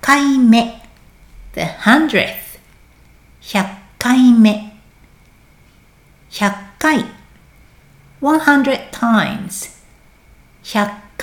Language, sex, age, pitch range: Japanese, female, 60-79, 200-275 Hz